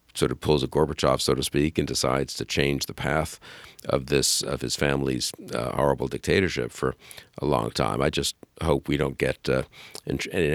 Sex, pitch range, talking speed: male, 70-80 Hz, 200 wpm